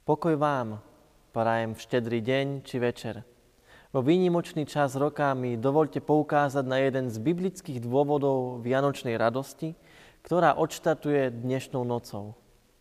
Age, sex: 20-39, male